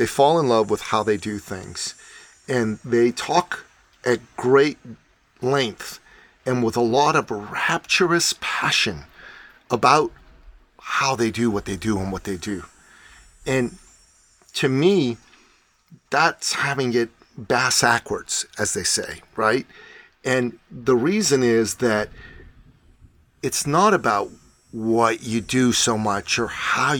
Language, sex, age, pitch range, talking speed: English, male, 40-59, 110-135 Hz, 135 wpm